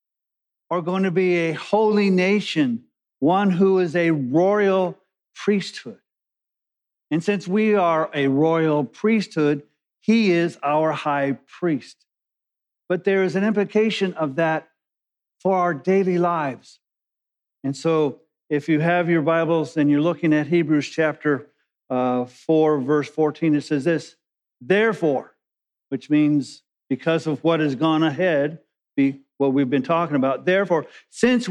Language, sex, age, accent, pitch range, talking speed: English, male, 50-69, American, 155-205 Hz, 140 wpm